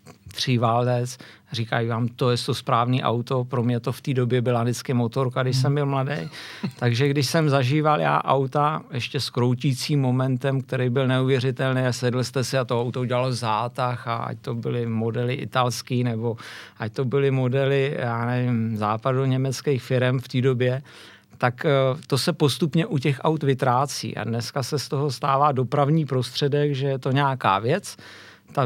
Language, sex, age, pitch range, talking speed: Czech, male, 50-69, 125-145 Hz, 175 wpm